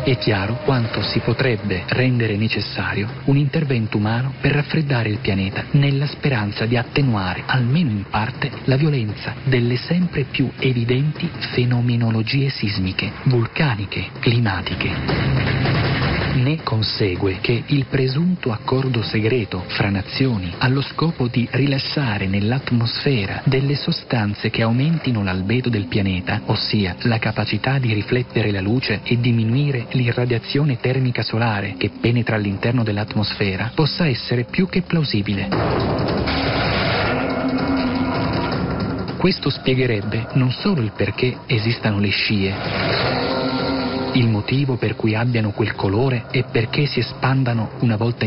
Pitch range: 110-135 Hz